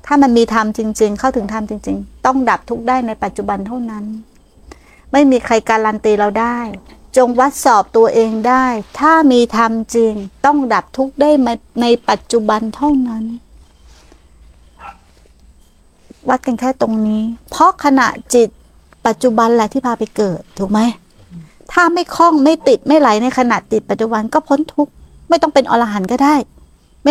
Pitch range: 210-265 Hz